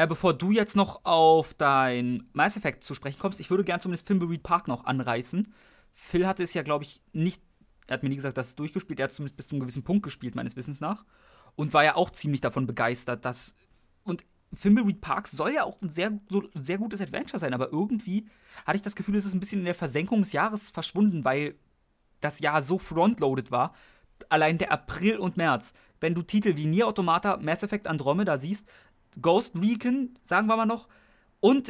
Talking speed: 215 wpm